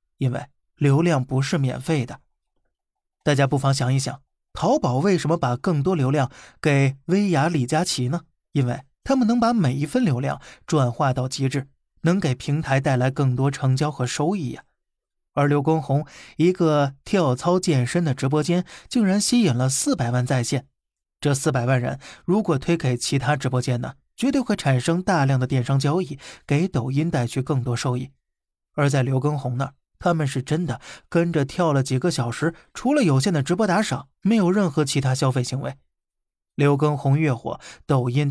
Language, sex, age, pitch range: Chinese, male, 20-39, 130-170 Hz